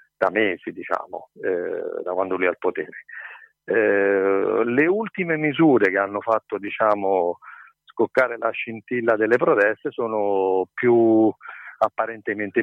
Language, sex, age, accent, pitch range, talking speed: Italian, male, 50-69, native, 95-120 Hz, 110 wpm